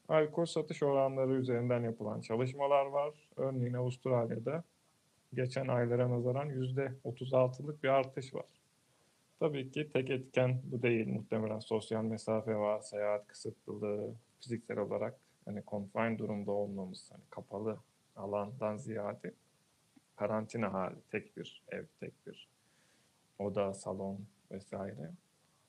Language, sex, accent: Turkish, male, native